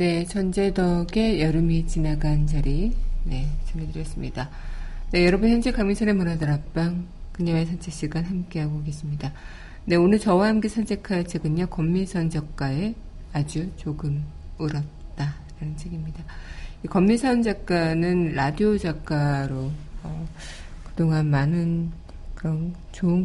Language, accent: Korean, native